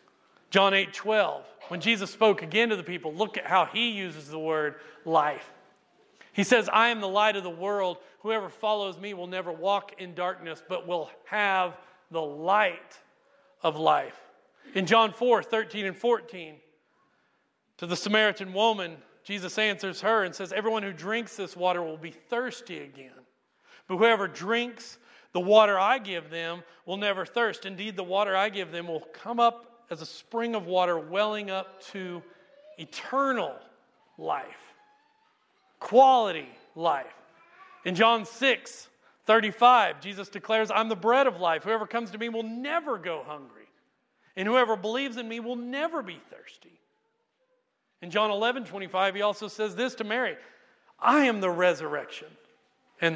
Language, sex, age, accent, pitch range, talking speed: English, male, 40-59, American, 180-230 Hz, 165 wpm